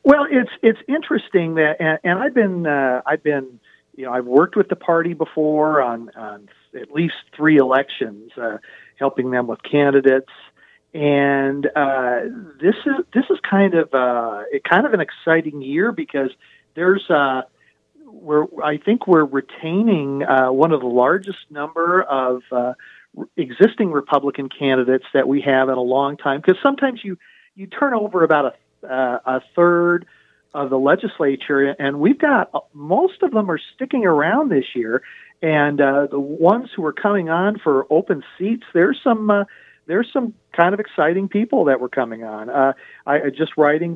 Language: English